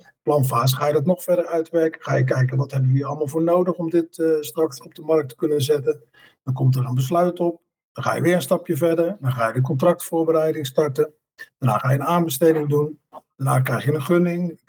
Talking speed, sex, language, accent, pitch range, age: 235 wpm, male, Dutch, Dutch, 135-165 Hz, 50-69